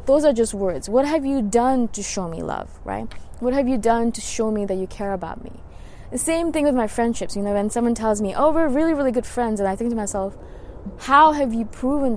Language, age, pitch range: English, 20-39, 195-250 Hz